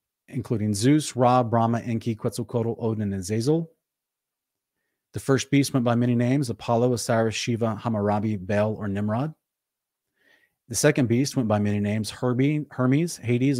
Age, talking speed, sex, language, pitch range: 30-49, 145 wpm, male, English, 110-135 Hz